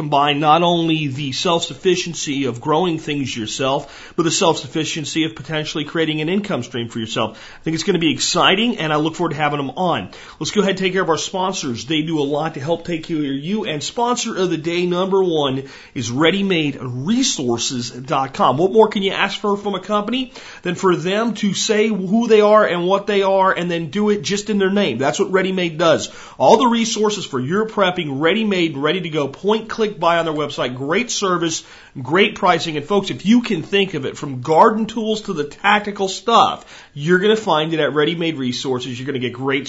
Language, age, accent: English, 40-59, American